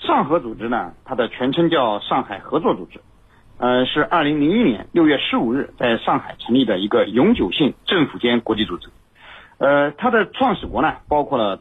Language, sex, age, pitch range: Chinese, male, 50-69, 110-165 Hz